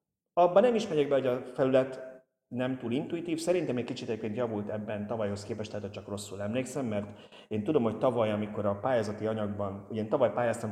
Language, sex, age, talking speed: Hungarian, male, 30-49, 195 wpm